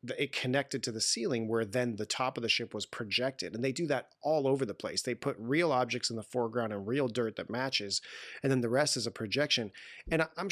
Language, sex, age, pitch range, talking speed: English, male, 30-49, 110-140 Hz, 245 wpm